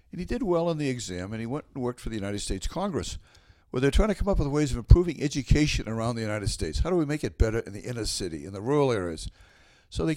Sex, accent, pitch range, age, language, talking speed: male, American, 95-140 Hz, 60-79, English, 275 wpm